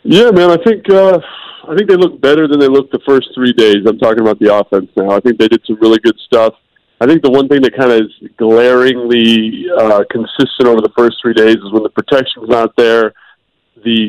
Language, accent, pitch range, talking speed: English, American, 110-130 Hz, 240 wpm